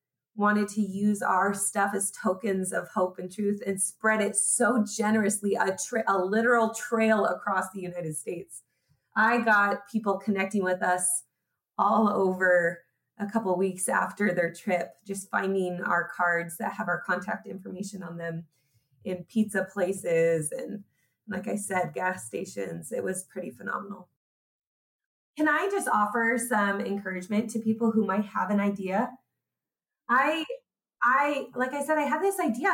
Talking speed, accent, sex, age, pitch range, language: 160 wpm, American, female, 20-39, 190-240 Hz, English